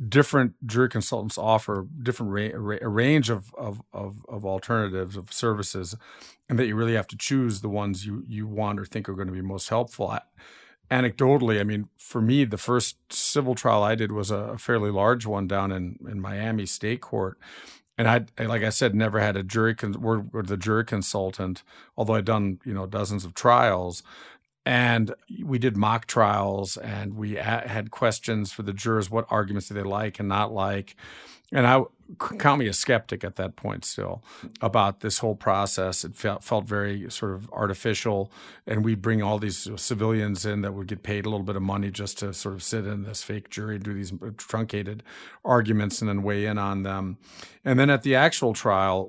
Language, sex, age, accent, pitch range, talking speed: English, male, 50-69, American, 100-115 Hz, 200 wpm